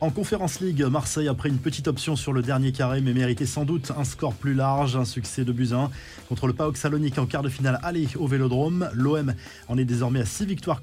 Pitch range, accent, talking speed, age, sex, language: 125-145 Hz, French, 235 wpm, 20-39, male, French